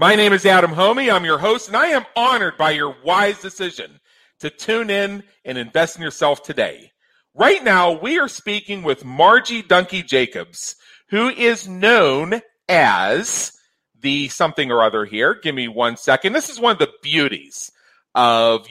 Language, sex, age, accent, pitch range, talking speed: English, male, 40-59, American, 130-205 Hz, 165 wpm